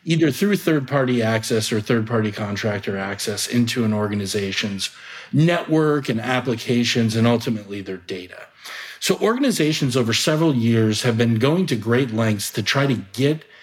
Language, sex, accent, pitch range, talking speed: English, male, American, 110-135 Hz, 145 wpm